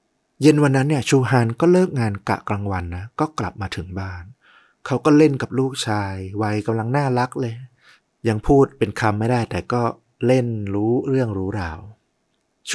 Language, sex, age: Thai, male, 30-49